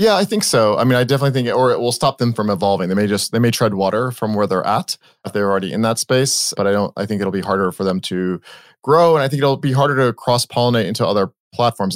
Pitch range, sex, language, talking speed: 100-125 Hz, male, English, 285 wpm